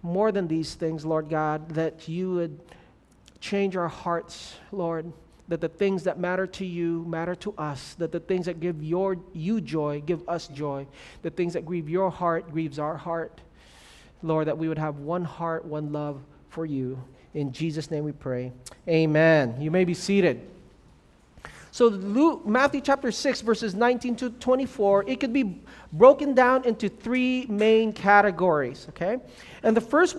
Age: 40-59